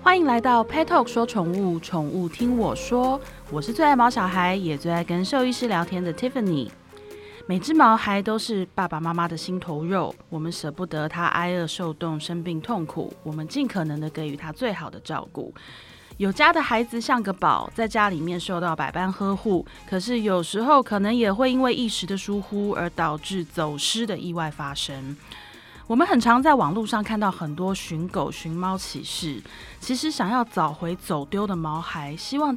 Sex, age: female, 20-39